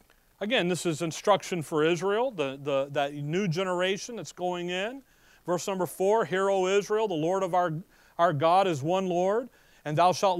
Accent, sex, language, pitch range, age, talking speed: American, male, English, 175-220 Hz, 40-59, 185 wpm